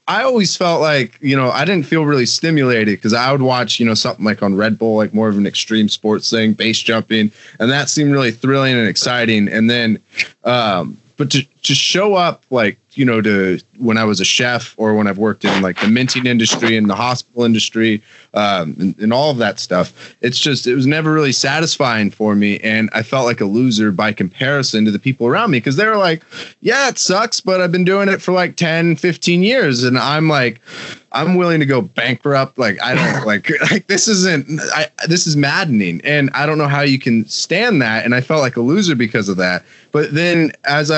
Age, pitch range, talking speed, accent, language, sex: 20-39, 110-145 Hz, 225 wpm, American, English, male